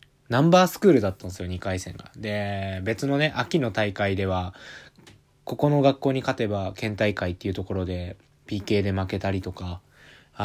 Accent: native